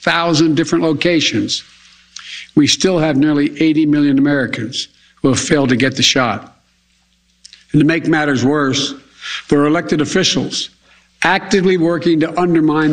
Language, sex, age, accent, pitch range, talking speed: English, male, 60-79, American, 130-175 Hz, 140 wpm